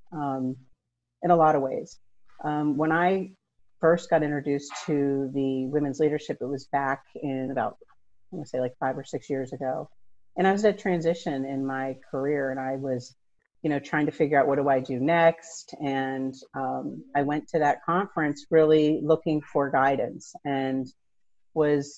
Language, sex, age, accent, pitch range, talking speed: English, female, 40-59, American, 135-160 Hz, 180 wpm